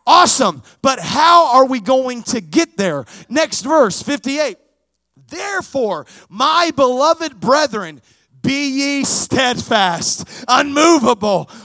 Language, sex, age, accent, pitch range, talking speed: English, male, 30-49, American, 240-325 Hz, 105 wpm